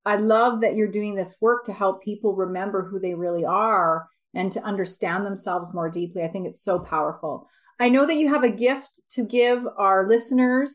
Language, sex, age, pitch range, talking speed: English, female, 30-49, 195-230 Hz, 205 wpm